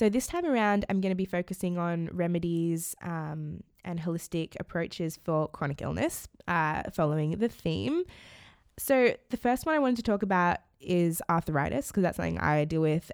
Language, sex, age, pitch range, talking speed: English, female, 20-39, 155-200 Hz, 180 wpm